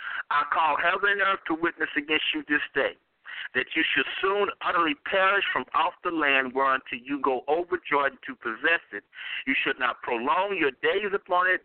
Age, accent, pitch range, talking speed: 60-79, American, 150-225 Hz, 195 wpm